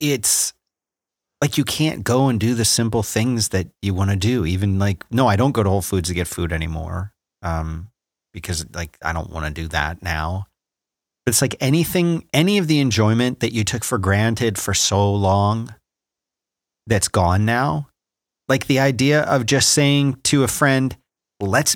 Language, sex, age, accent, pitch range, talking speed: English, male, 30-49, American, 100-140 Hz, 185 wpm